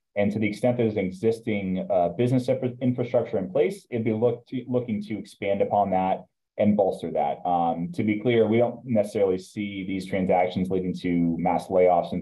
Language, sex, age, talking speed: English, male, 30-49, 175 wpm